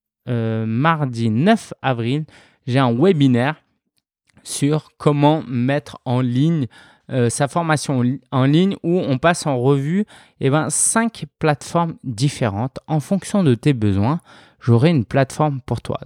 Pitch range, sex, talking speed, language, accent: 115-150 Hz, male, 140 wpm, French, French